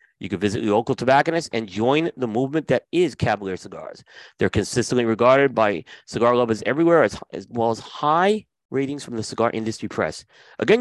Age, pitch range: 30-49, 100-135 Hz